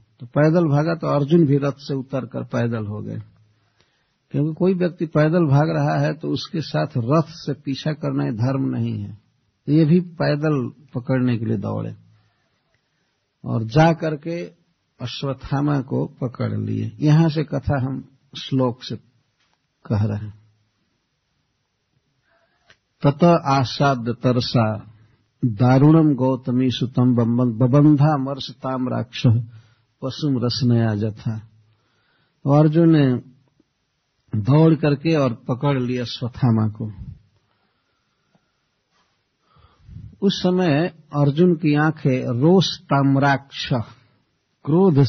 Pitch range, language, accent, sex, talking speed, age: 115-150 Hz, Hindi, native, male, 110 wpm, 60-79